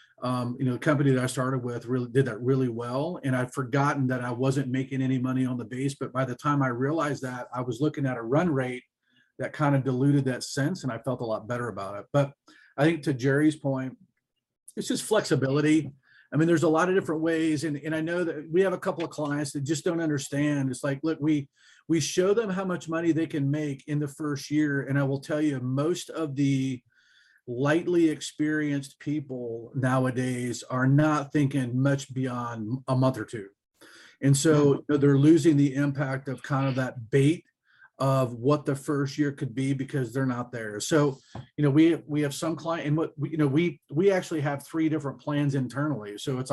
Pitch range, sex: 130-155 Hz, male